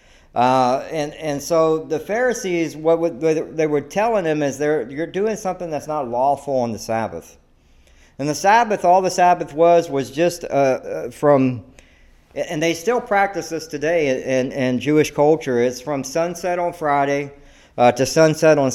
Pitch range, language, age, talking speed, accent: 120-155 Hz, English, 50-69, 170 wpm, American